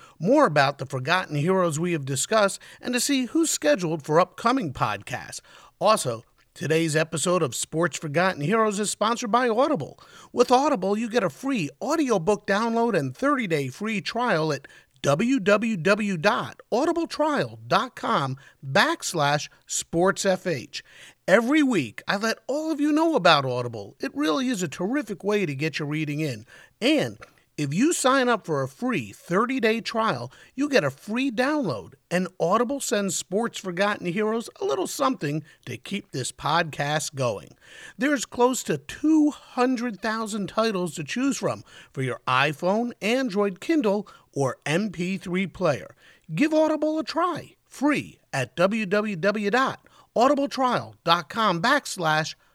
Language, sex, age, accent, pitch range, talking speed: English, male, 50-69, American, 160-250 Hz, 135 wpm